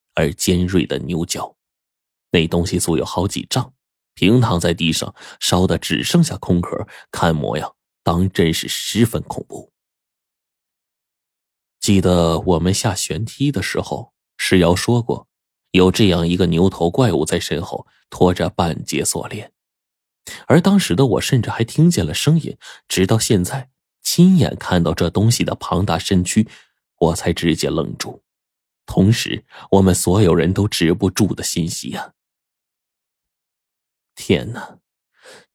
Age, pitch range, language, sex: 20-39, 85-110 Hz, Chinese, male